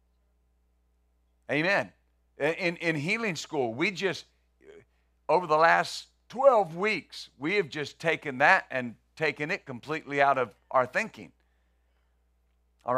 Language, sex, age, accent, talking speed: English, male, 50-69, American, 120 wpm